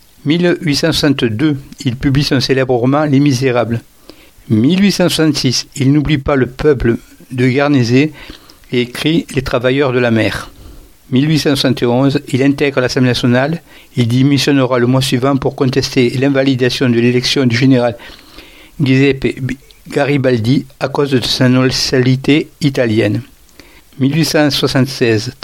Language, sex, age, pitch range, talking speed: English, male, 60-79, 125-145 Hz, 115 wpm